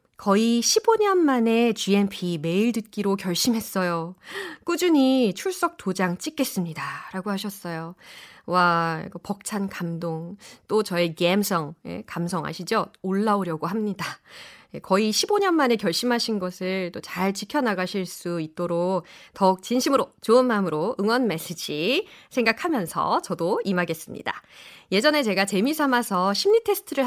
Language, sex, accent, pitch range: Korean, female, native, 180-260 Hz